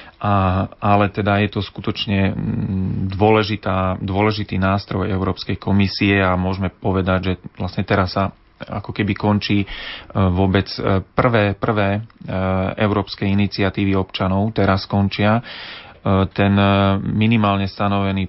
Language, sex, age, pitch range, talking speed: Slovak, male, 30-49, 95-105 Hz, 105 wpm